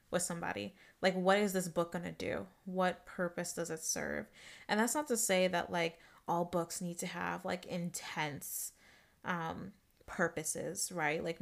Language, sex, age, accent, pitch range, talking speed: English, female, 20-39, American, 175-200 Hz, 170 wpm